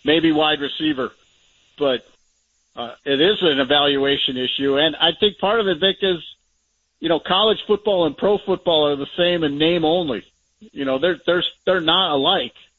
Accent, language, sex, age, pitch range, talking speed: American, English, male, 50-69, 130-160 Hz, 180 wpm